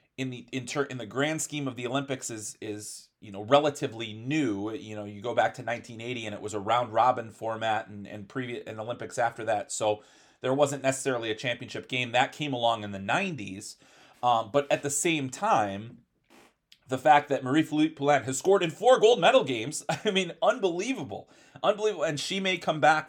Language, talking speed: English, 205 wpm